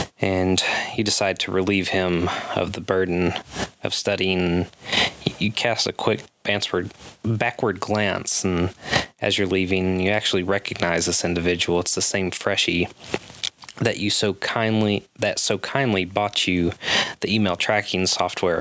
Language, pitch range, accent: English, 90-100 Hz, American